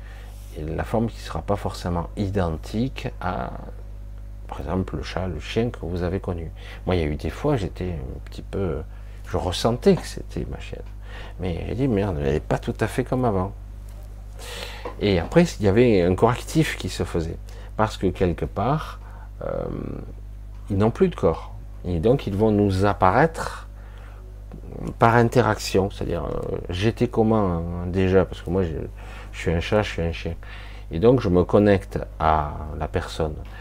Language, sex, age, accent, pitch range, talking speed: French, male, 50-69, French, 85-105 Hz, 185 wpm